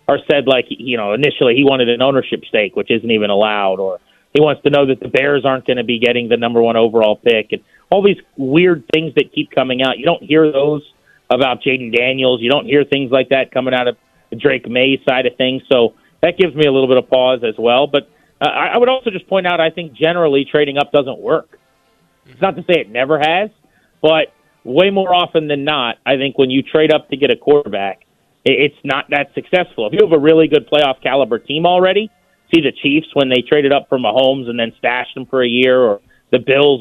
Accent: American